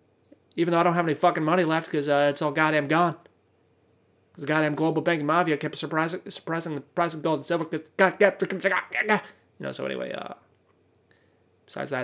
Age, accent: 20-39, American